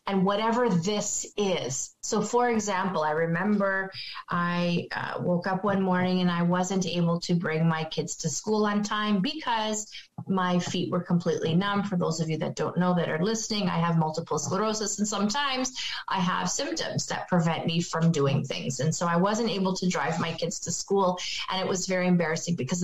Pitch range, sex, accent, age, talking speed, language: 165-195 Hz, female, American, 30-49, 195 wpm, English